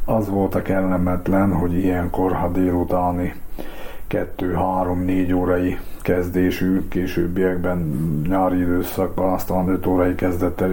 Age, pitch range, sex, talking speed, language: 60-79, 90-95 Hz, male, 100 wpm, Hungarian